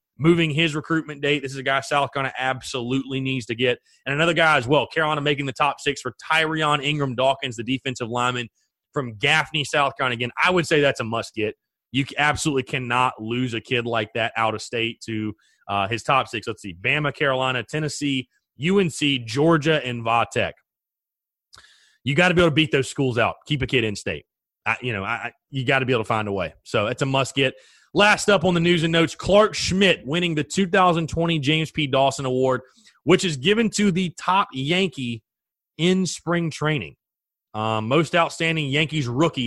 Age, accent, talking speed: 30-49, American, 195 wpm